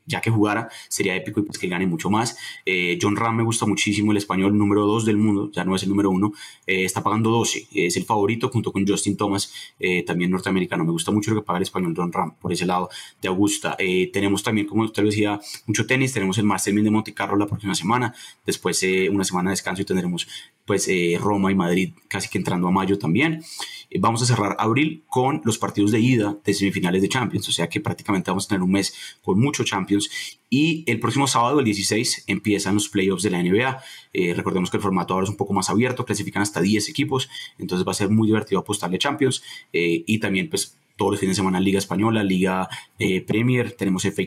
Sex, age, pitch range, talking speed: male, 20-39, 95-110 Hz, 230 wpm